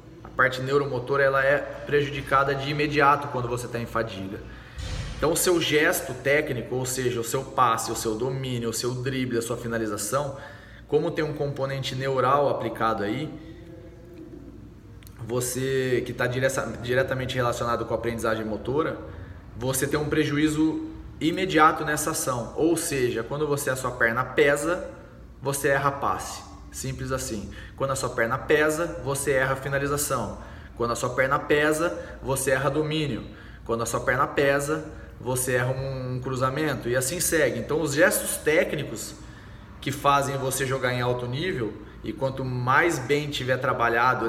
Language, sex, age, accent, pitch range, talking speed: Portuguese, male, 20-39, Brazilian, 115-145 Hz, 155 wpm